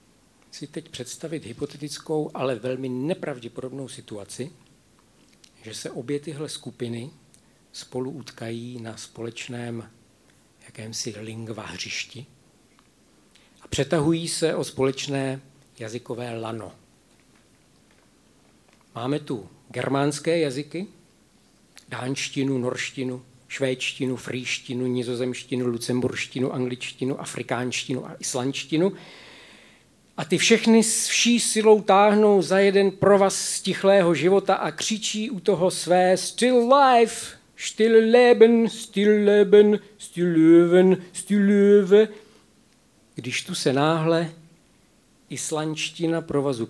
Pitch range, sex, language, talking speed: 125-185 Hz, male, Czech, 95 wpm